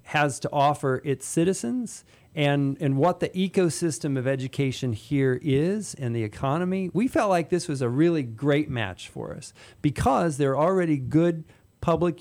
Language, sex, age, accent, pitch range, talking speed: English, male, 40-59, American, 120-155 Hz, 165 wpm